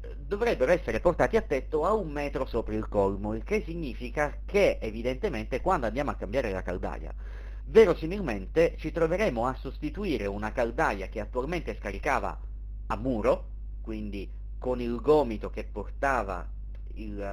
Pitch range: 100-160 Hz